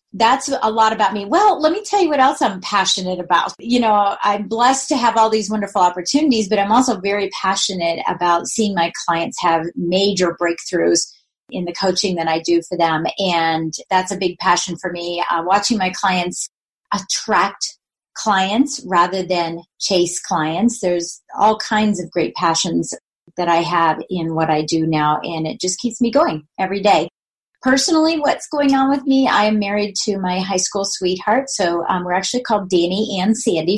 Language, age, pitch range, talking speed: English, 30-49, 175-215 Hz, 190 wpm